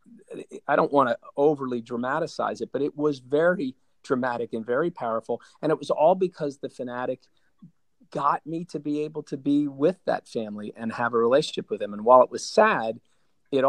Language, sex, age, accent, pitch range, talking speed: English, male, 40-59, American, 115-135 Hz, 195 wpm